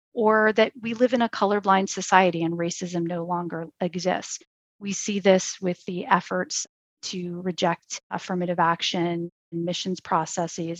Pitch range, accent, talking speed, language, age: 170-200 Hz, American, 140 wpm, English, 30-49